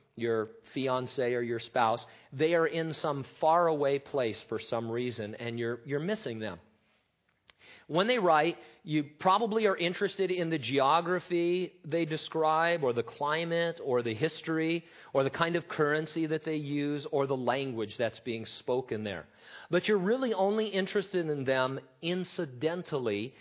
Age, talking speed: 40-59, 155 wpm